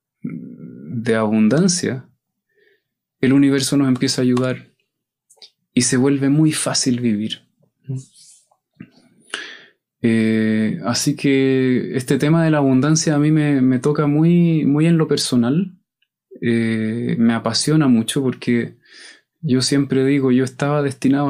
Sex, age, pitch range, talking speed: male, 20-39, 125-155 Hz, 120 wpm